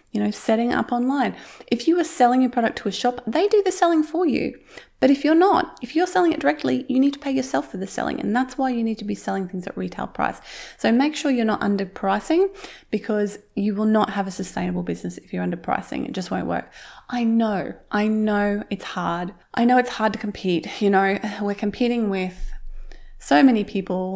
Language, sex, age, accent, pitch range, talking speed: English, female, 20-39, Australian, 195-245 Hz, 225 wpm